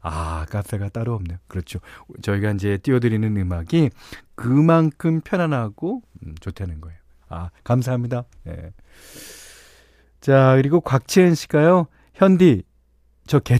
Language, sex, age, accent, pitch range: Korean, male, 40-59, native, 100-150 Hz